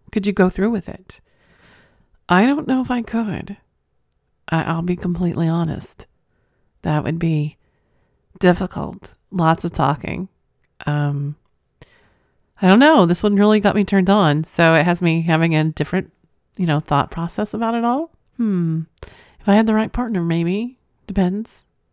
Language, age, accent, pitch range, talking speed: English, 40-59, American, 155-190 Hz, 155 wpm